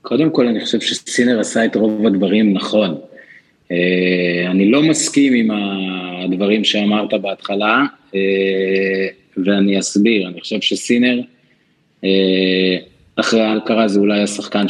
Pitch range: 95-115 Hz